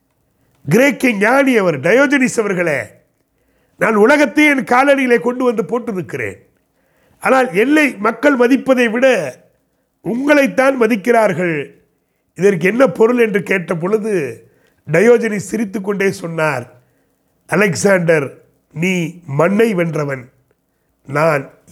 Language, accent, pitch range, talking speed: Tamil, native, 195-275 Hz, 95 wpm